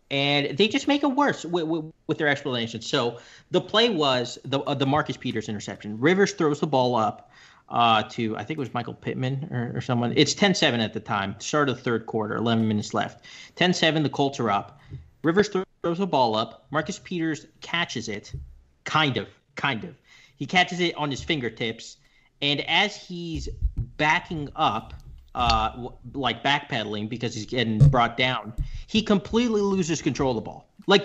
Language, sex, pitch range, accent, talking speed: English, male, 120-170 Hz, American, 185 wpm